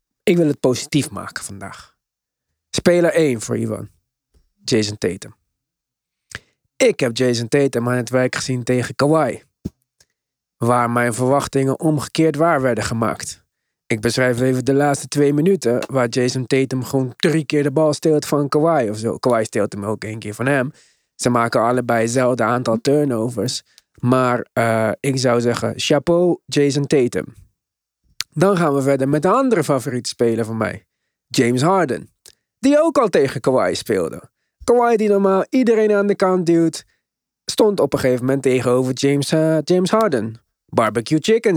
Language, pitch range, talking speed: Dutch, 120-175 Hz, 155 wpm